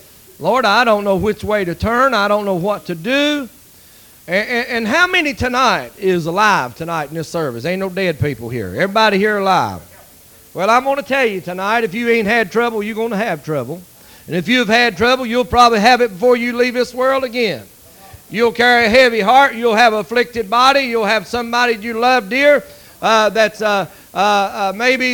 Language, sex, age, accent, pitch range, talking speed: English, male, 40-59, American, 200-250 Hz, 210 wpm